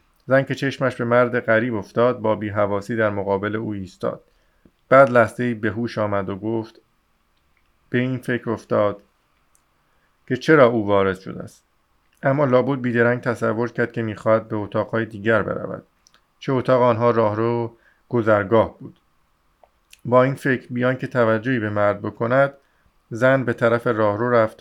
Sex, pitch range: male, 110-125 Hz